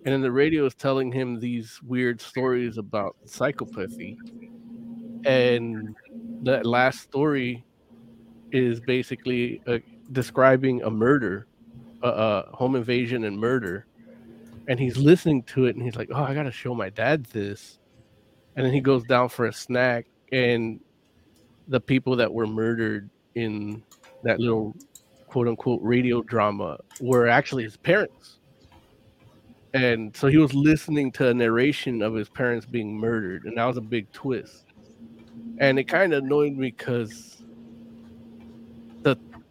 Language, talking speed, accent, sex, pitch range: English, 145 wpm, American, male, 115-150 Hz